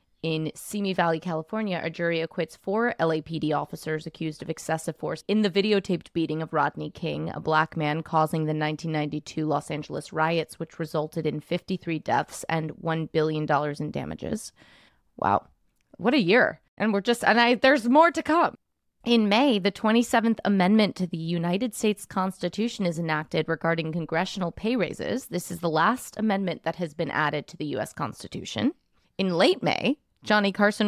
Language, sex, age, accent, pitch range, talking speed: English, female, 20-39, American, 160-230 Hz, 170 wpm